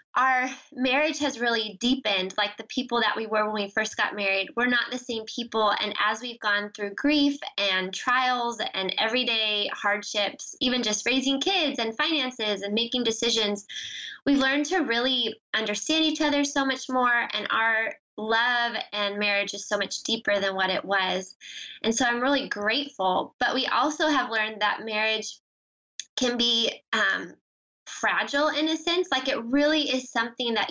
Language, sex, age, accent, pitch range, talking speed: English, female, 20-39, American, 210-265 Hz, 175 wpm